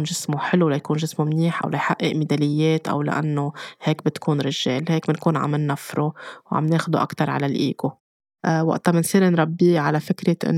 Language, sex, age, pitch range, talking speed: Arabic, female, 20-39, 155-175 Hz, 160 wpm